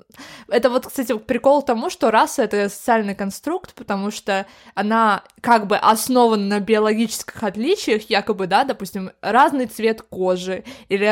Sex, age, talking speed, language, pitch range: female, 20-39, 145 wpm, Russian, 190-235 Hz